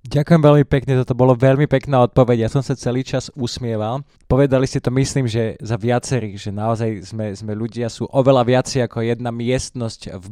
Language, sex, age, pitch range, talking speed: Slovak, male, 20-39, 120-140 Hz, 190 wpm